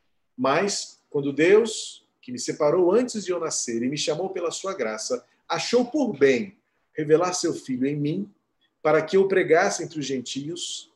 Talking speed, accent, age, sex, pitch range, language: 170 wpm, Brazilian, 40-59, male, 145-210 Hz, Portuguese